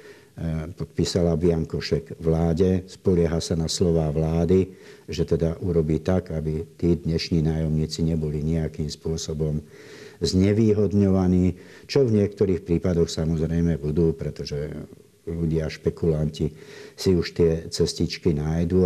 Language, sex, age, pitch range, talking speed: Slovak, male, 60-79, 80-95 Hz, 110 wpm